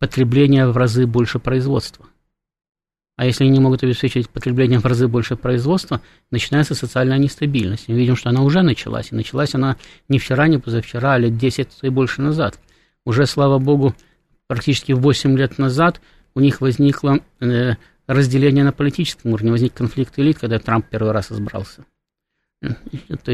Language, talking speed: Russian, 155 wpm